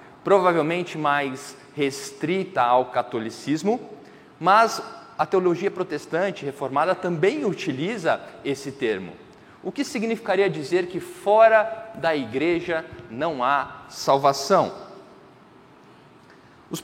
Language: Portuguese